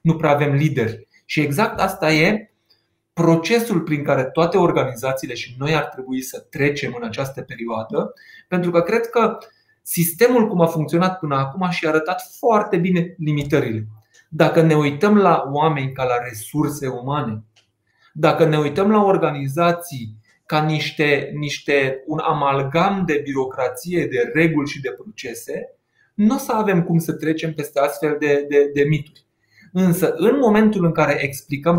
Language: Romanian